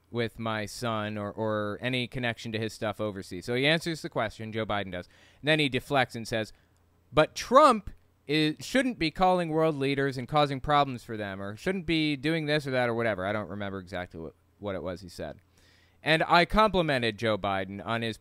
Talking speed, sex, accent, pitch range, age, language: 210 wpm, male, American, 100-145 Hz, 30-49, English